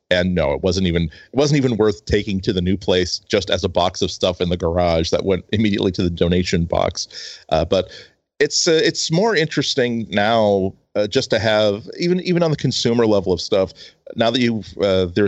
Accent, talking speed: American, 215 wpm